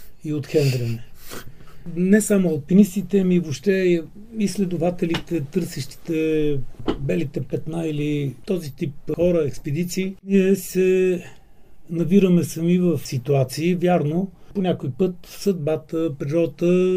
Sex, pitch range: male, 155-190 Hz